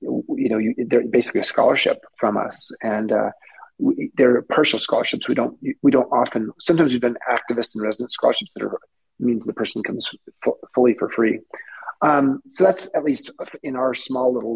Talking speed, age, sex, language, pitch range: 190 wpm, 30-49, male, English, 120-170 Hz